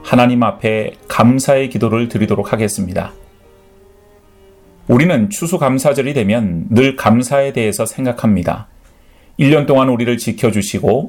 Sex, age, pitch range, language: male, 30-49, 105-140 Hz, Korean